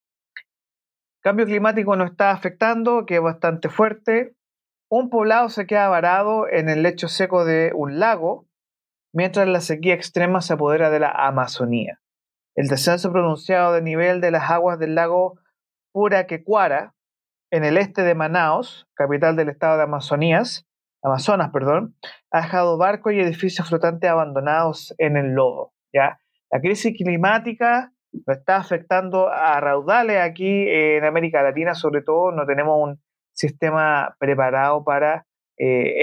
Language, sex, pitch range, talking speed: Spanish, male, 150-195 Hz, 140 wpm